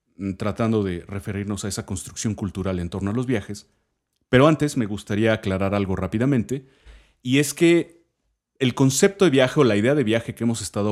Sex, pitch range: male, 100-125 Hz